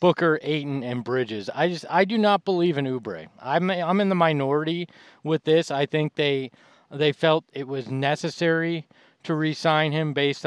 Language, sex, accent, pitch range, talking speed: English, male, American, 130-155 Hz, 180 wpm